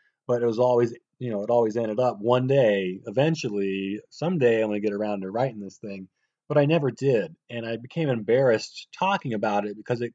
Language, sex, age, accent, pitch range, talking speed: English, male, 30-49, American, 105-130 Hz, 215 wpm